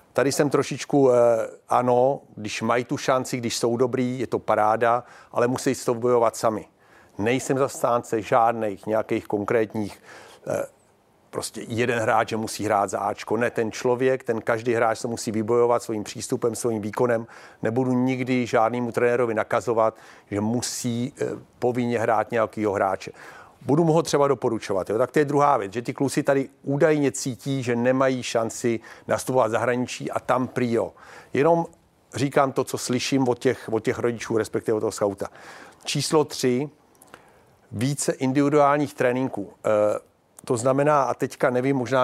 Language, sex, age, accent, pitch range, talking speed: Czech, male, 50-69, native, 120-140 Hz, 155 wpm